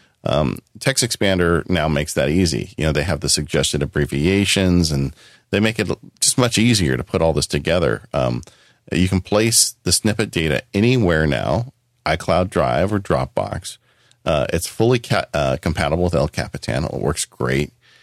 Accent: American